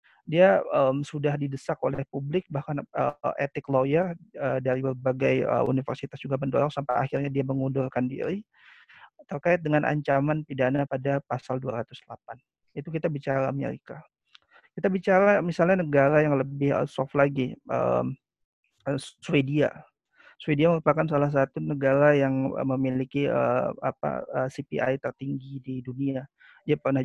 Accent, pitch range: native, 135-165 Hz